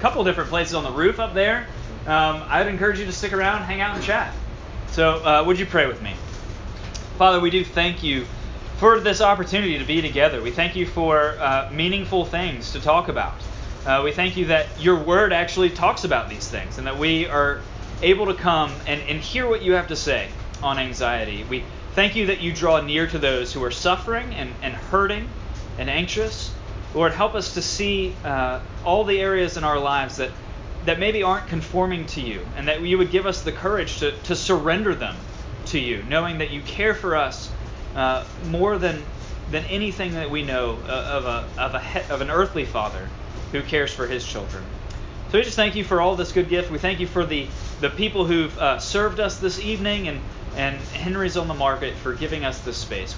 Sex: male